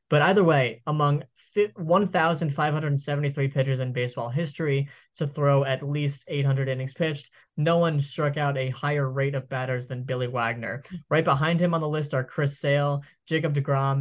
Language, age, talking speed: English, 20-39, 165 wpm